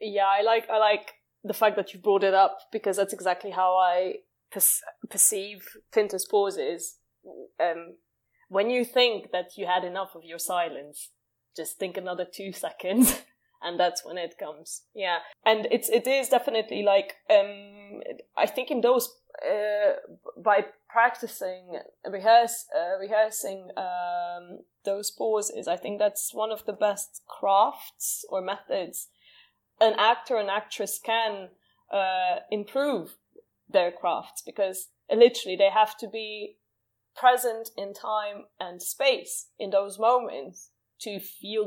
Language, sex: English, female